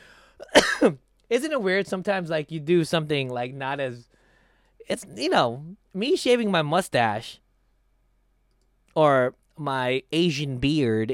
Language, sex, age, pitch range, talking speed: English, male, 20-39, 130-180 Hz, 120 wpm